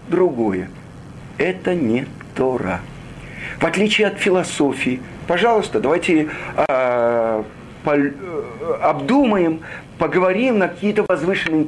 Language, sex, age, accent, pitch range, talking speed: Russian, male, 50-69, native, 135-180 Hz, 85 wpm